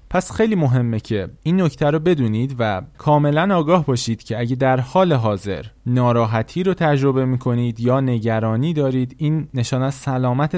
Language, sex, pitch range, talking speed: Persian, male, 110-140 Hz, 155 wpm